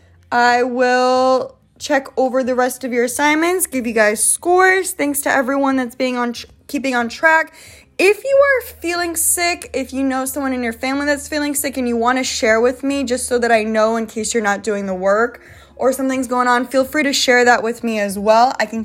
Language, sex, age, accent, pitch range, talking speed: English, female, 10-29, American, 220-270 Hz, 230 wpm